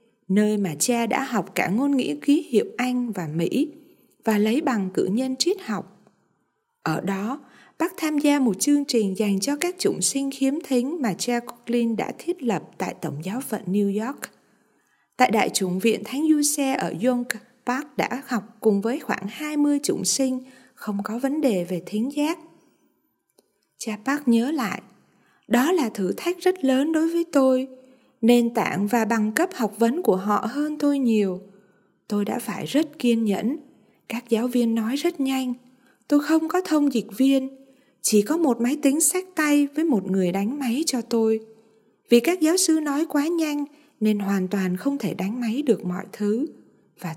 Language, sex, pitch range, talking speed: Vietnamese, female, 205-280 Hz, 185 wpm